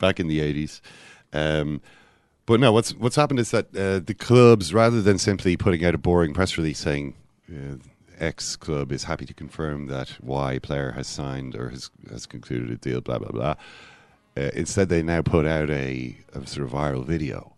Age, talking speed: 40-59, 200 wpm